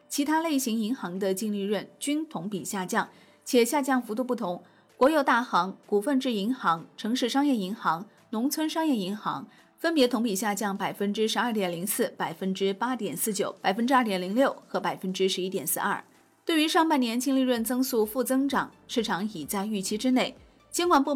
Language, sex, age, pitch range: Chinese, female, 30-49, 195-260 Hz